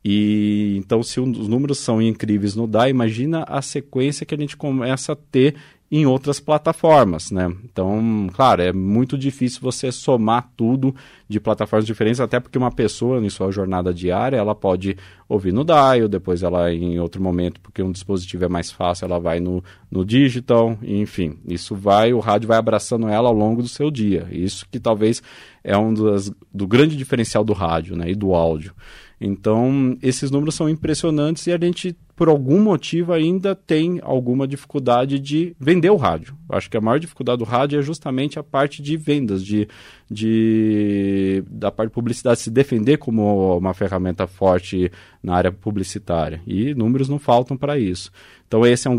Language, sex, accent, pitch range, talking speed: Portuguese, male, Brazilian, 100-135 Hz, 180 wpm